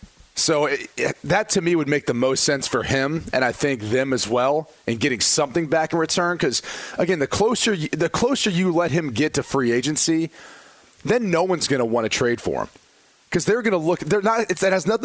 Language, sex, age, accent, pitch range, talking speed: English, male, 30-49, American, 135-175 Hz, 240 wpm